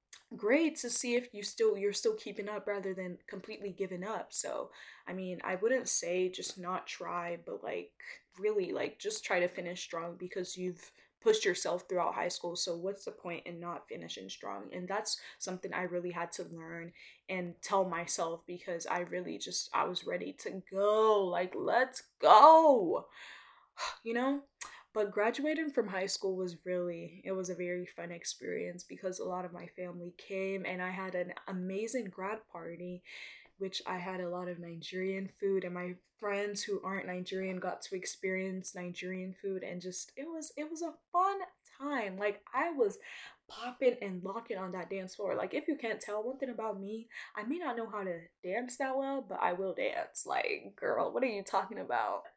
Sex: female